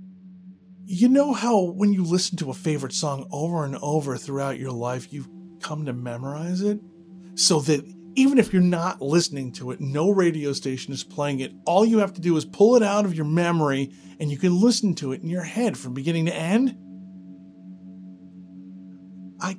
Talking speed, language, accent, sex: 190 wpm, English, American, male